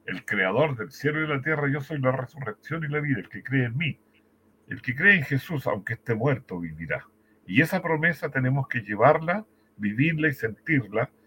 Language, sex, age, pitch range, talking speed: Spanish, male, 60-79, 110-140 Hz, 200 wpm